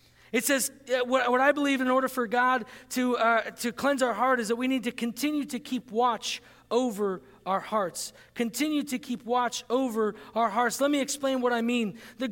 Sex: male